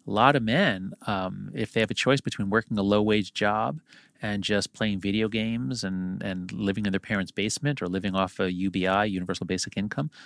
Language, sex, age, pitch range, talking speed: English, male, 40-59, 100-125 Hz, 205 wpm